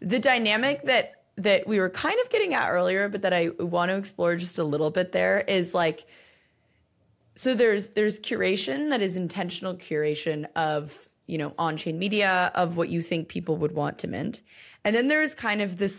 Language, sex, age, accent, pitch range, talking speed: English, female, 20-39, American, 155-195 Hz, 200 wpm